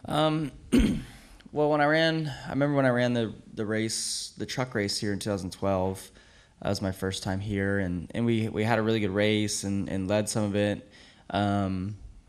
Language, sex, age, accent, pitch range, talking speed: English, male, 10-29, American, 90-110 Hz, 200 wpm